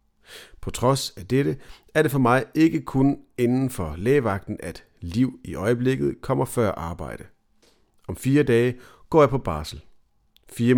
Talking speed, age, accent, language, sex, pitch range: 155 wpm, 40-59, native, Danish, male, 95-125 Hz